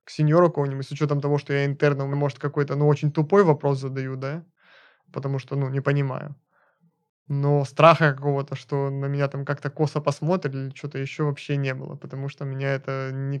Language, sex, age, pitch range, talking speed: Russian, male, 20-39, 140-155 Hz, 190 wpm